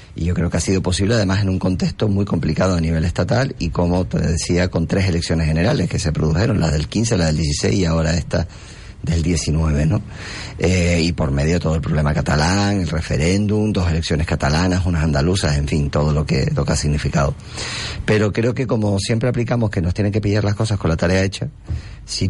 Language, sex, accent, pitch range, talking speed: Spanish, male, Argentinian, 80-100 Hz, 220 wpm